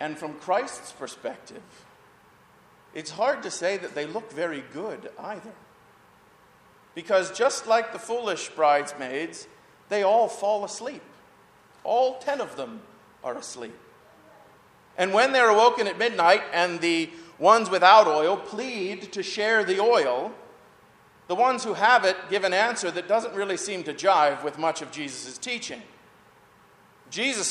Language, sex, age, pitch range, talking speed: English, male, 40-59, 165-225 Hz, 145 wpm